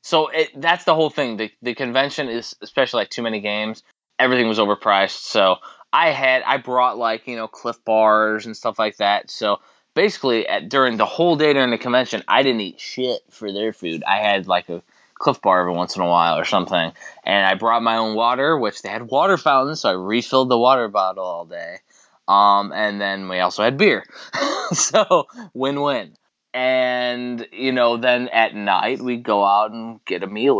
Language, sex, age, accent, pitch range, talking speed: English, male, 20-39, American, 100-125 Hz, 205 wpm